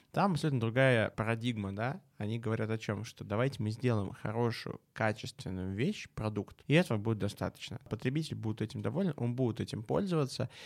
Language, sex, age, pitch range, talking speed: Russian, male, 20-39, 105-135 Hz, 165 wpm